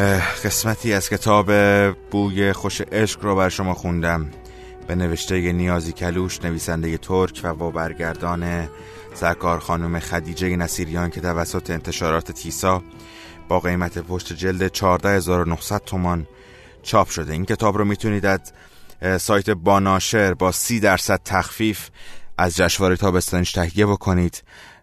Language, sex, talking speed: Persian, male, 115 wpm